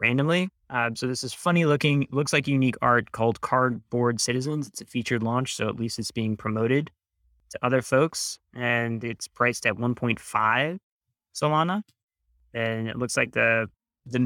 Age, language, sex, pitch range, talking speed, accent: 20-39, English, male, 115-135 Hz, 165 wpm, American